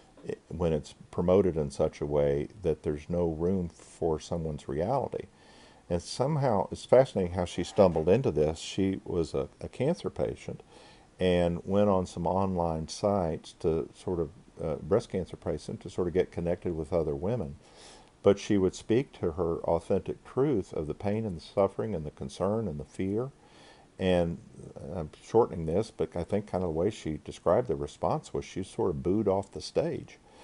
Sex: male